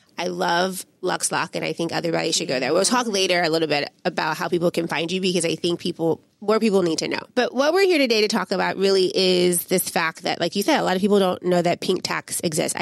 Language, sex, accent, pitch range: English, female, American, 170-200 Hz